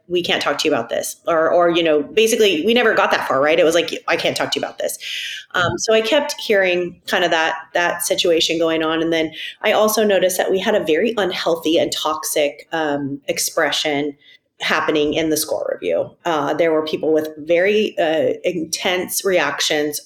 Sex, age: female, 30-49